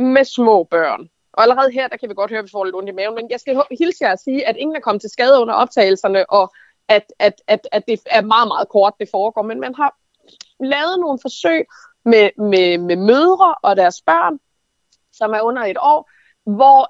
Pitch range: 215-285 Hz